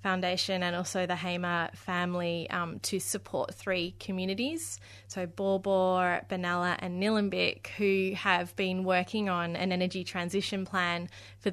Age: 20-39